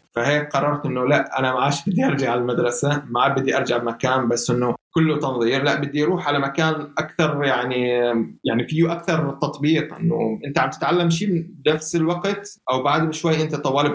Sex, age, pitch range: male, 20-39, 125-160 Hz